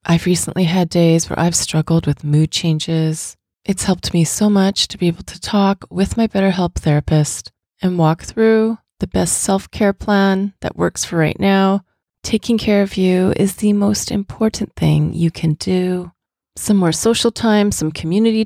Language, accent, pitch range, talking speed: English, American, 165-205 Hz, 175 wpm